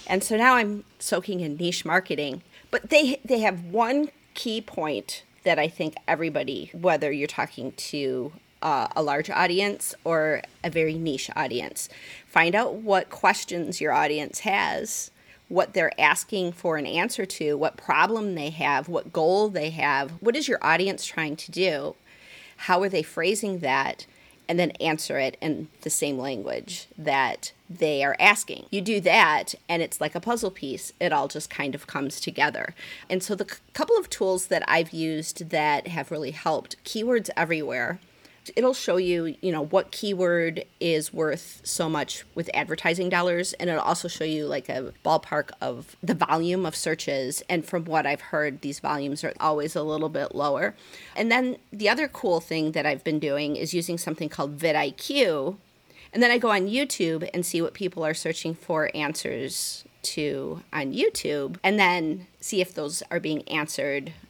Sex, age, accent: female, 40-59, American